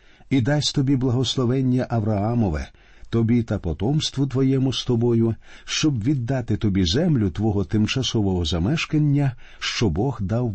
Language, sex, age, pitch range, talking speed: Ukrainian, male, 50-69, 95-135 Hz, 120 wpm